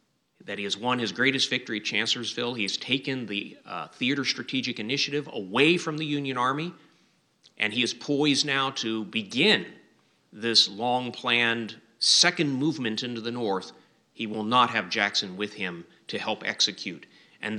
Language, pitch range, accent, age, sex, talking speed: English, 110-140 Hz, American, 30-49, male, 155 wpm